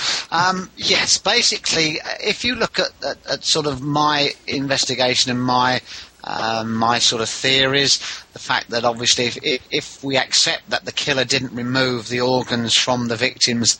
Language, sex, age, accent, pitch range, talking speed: English, male, 40-59, British, 120-135 Hz, 165 wpm